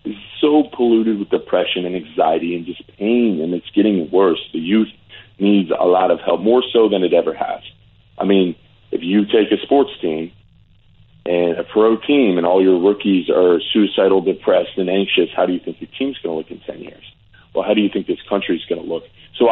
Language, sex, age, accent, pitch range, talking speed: English, male, 40-59, American, 90-110 Hz, 220 wpm